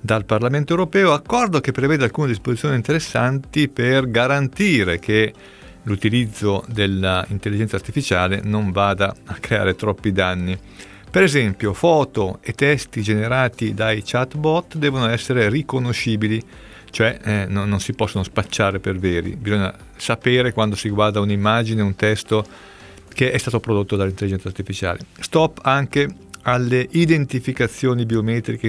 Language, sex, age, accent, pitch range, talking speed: Italian, male, 40-59, native, 105-135 Hz, 125 wpm